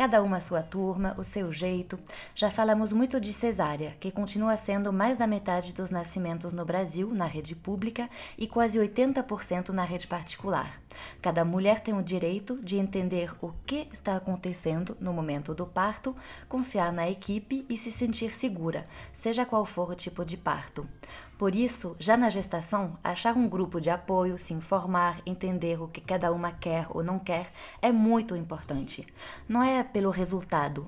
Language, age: Portuguese, 20-39